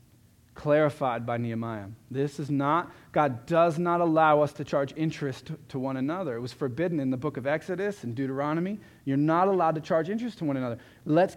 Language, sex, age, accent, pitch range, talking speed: English, male, 40-59, American, 115-150 Hz, 195 wpm